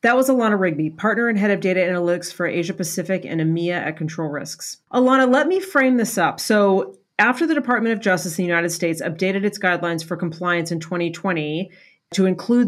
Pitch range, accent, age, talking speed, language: 165-200 Hz, American, 40-59, 205 wpm, English